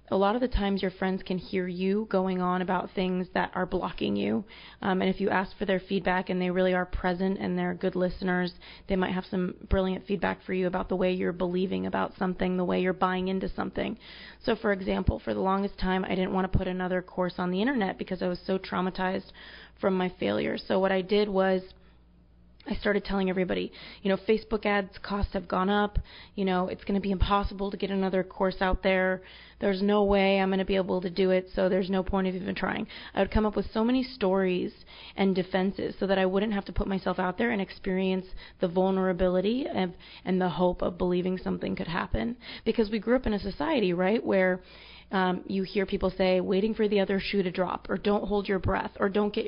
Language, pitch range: English, 185-200 Hz